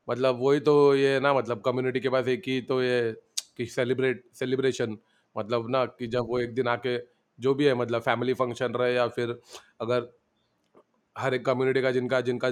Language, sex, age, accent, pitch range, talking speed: Hindi, male, 30-49, native, 120-135 Hz, 195 wpm